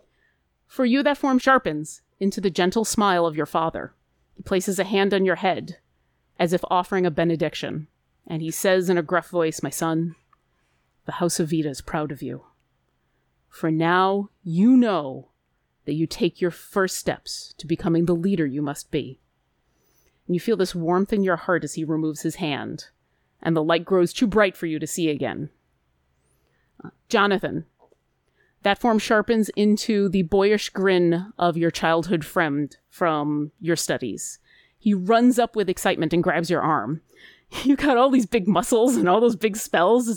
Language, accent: English, American